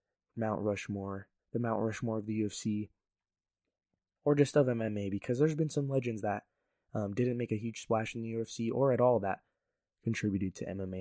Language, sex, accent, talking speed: English, male, American, 185 wpm